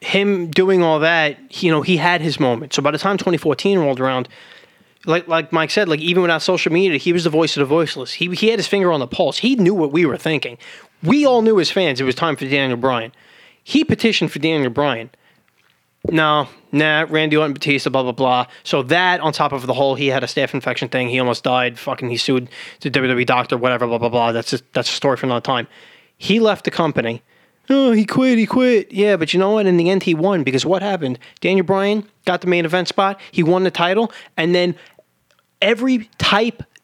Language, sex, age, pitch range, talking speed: English, male, 20-39, 140-190 Hz, 230 wpm